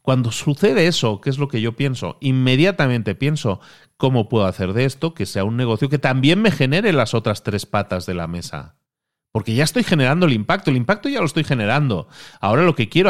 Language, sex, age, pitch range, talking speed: Spanish, male, 40-59, 105-145 Hz, 215 wpm